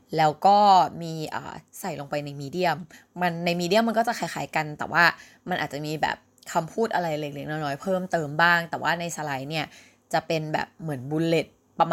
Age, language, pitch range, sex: 20-39, Thai, 150-190 Hz, female